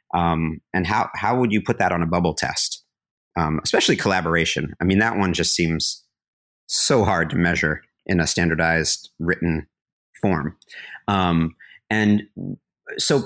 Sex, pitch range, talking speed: male, 85-95 Hz, 150 wpm